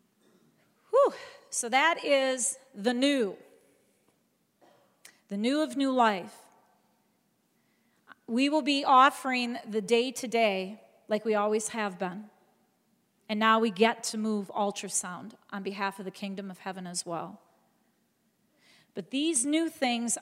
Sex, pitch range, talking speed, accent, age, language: female, 200-235 Hz, 120 wpm, American, 40-59, English